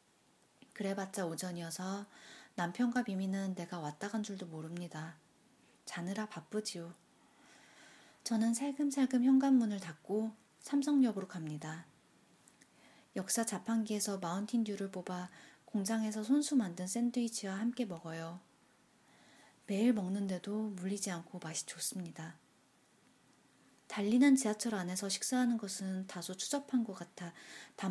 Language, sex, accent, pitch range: Korean, female, native, 180-230 Hz